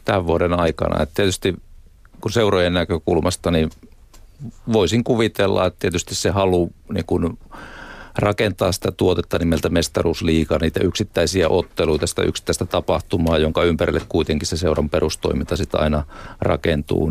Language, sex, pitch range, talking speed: Finnish, male, 80-105 Hz, 125 wpm